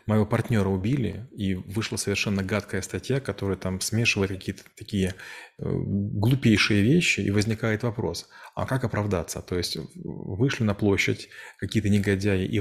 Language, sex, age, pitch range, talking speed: Russian, male, 30-49, 95-110 Hz, 140 wpm